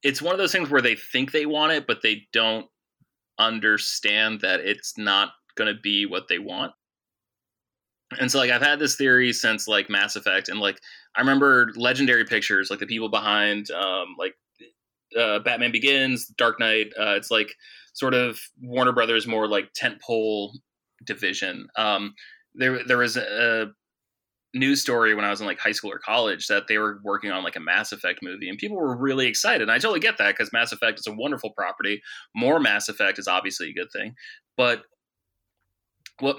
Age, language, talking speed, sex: 20-39, English, 190 wpm, male